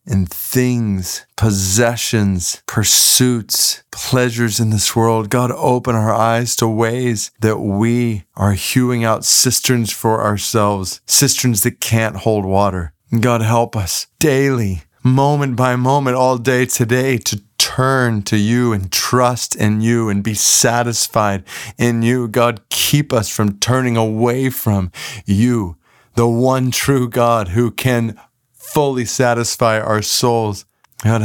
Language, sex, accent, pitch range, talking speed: English, male, American, 105-125 Hz, 135 wpm